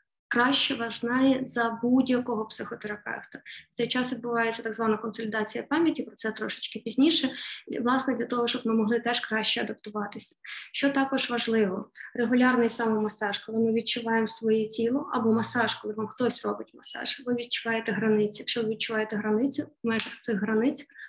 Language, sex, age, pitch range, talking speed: Ukrainian, female, 20-39, 225-255 Hz, 150 wpm